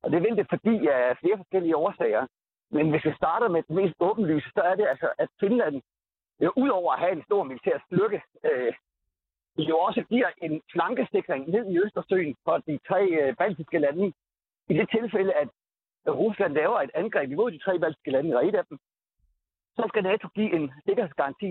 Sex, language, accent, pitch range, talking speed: male, Danish, native, 160-220 Hz, 190 wpm